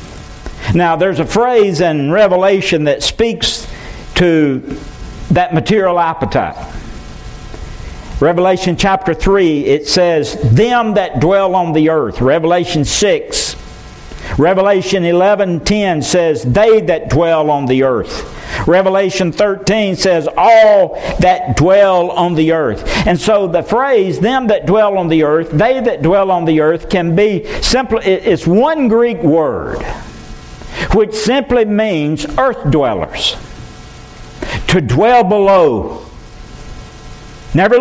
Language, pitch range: English, 160-210 Hz